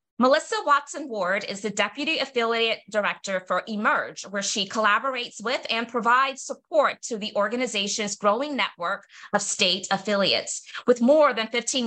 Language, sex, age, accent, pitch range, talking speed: English, female, 30-49, American, 200-270 Hz, 145 wpm